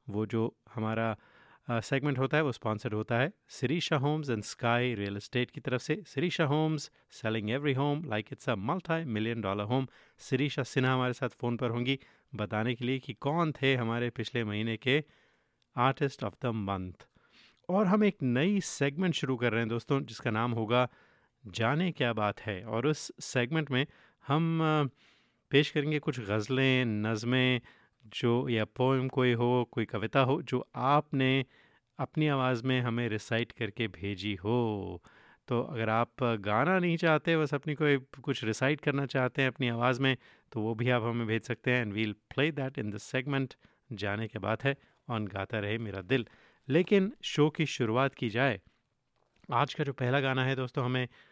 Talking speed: 180 wpm